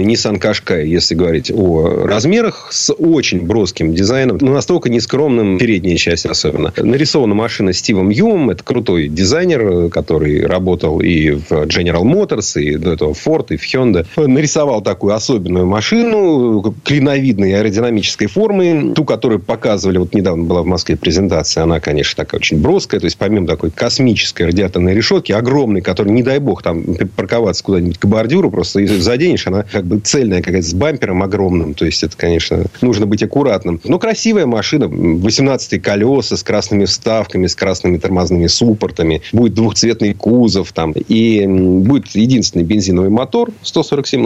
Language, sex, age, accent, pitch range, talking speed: Russian, male, 40-59, native, 90-120 Hz, 155 wpm